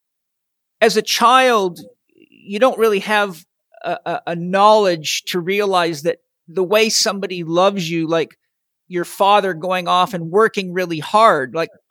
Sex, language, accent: male, English, American